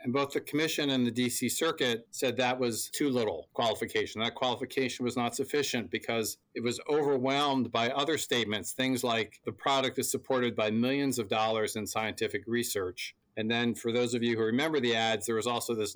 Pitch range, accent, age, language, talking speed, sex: 110-135 Hz, American, 40-59, English, 200 wpm, male